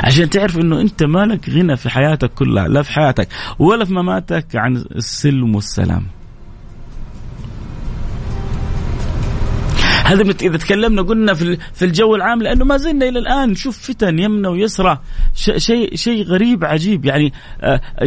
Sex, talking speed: male, 135 wpm